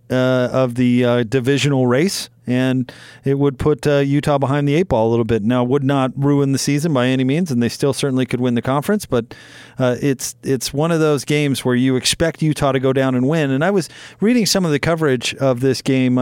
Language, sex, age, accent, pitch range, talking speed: English, male, 40-59, American, 125-165 Hz, 240 wpm